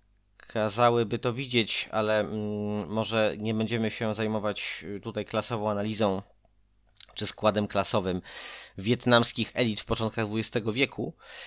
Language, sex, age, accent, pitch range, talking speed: Polish, male, 30-49, native, 110-125 Hz, 110 wpm